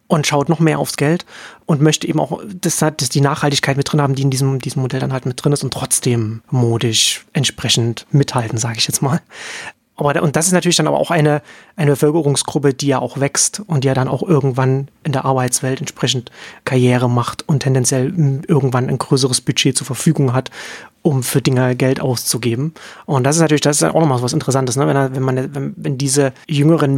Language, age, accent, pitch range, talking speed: German, 30-49, German, 130-150 Hz, 200 wpm